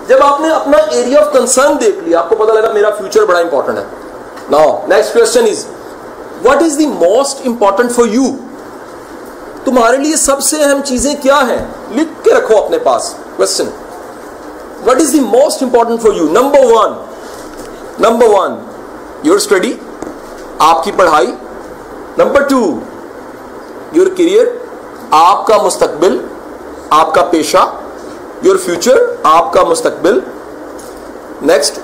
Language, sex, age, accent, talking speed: English, male, 40-59, Indian, 130 wpm